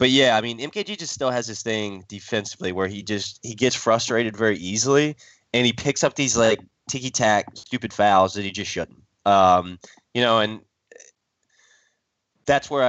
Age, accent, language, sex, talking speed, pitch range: 20-39, American, English, male, 180 wpm, 100-125 Hz